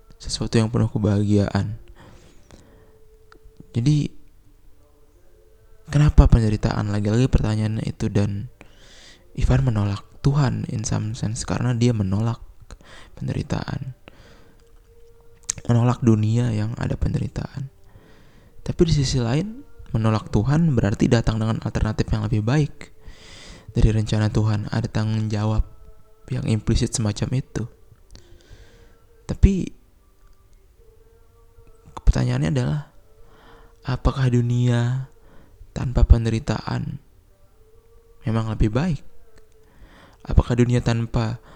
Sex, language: male, Indonesian